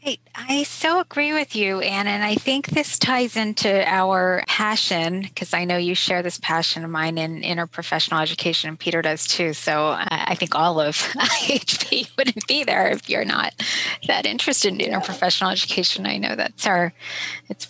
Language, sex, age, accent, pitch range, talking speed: English, female, 20-39, American, 170-200 Hz, 175 wpm